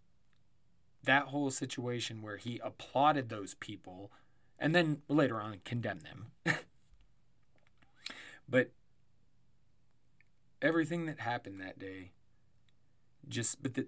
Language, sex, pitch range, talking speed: English, male, 120-145 Hz, 85 wpm